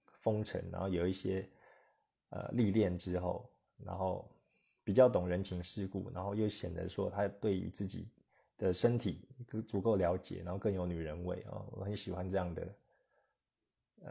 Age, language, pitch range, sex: 20-39, Chinese, 95-110 Hz, male